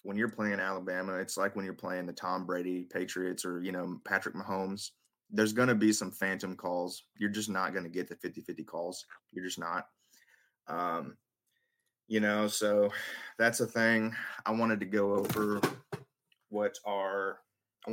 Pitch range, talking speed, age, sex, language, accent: 95-110 Hz, 175 wpm, 20-39, male, English, American